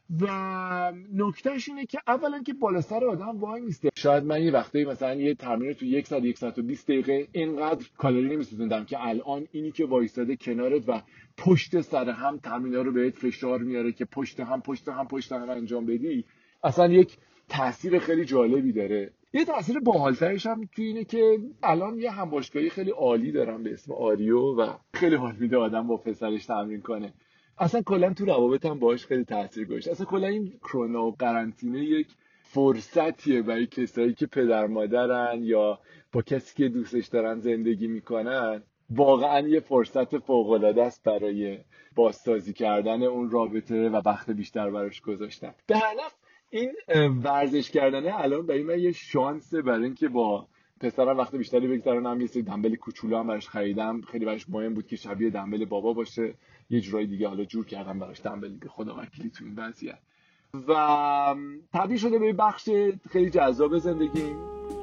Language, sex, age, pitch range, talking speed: Persian, male, 40-59, 115-170 Hz, 170 wpm